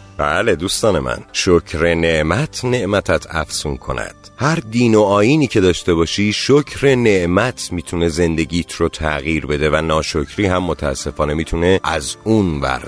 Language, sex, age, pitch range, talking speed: Persian, male, 30-49, 85-120 Hz, 140 wpm